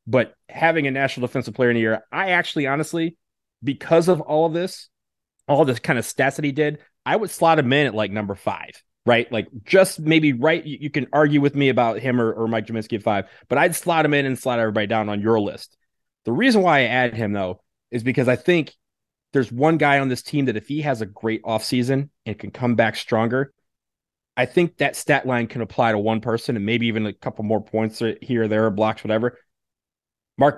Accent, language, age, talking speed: American, English, 30-49, 230 wpm